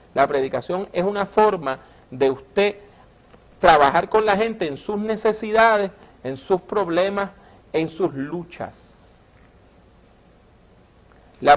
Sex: male